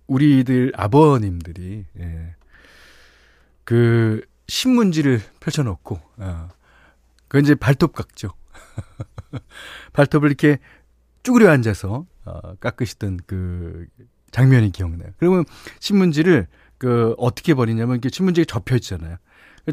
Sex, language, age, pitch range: male, Korean, 40-59, 95-150 Hz